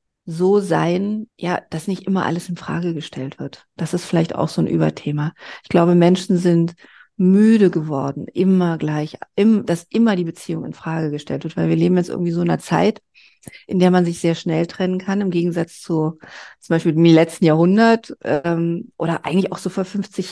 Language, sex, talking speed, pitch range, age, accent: German, female, 200 wpm, 160-185 Hz, 40-59, German